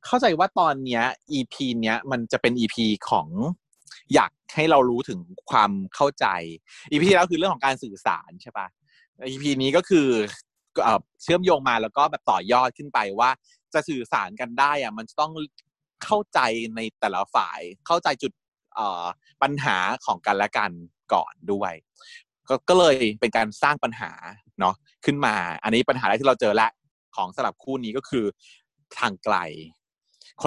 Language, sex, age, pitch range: Thai, male, 20-39, 105-150 Hz